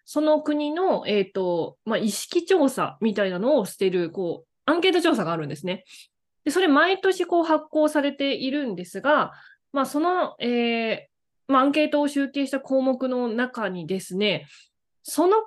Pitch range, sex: 195-295 Hz, female